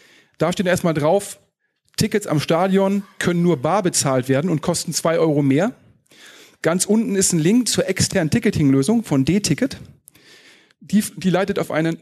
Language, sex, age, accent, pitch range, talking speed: German, male, 40-59, German, 150-195 Hz, 160 wpm